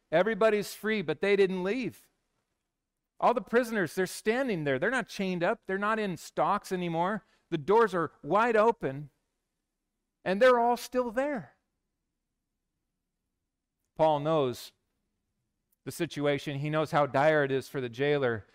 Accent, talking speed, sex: American, 140 wpm, male